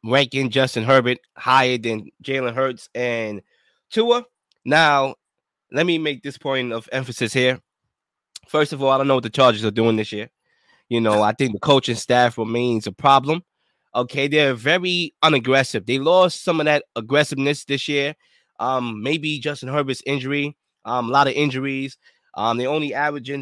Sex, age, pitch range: male, 20-39, 130-155 Hz